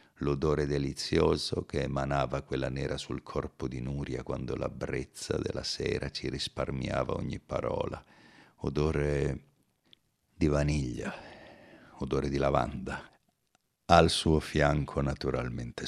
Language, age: Italian, 50-69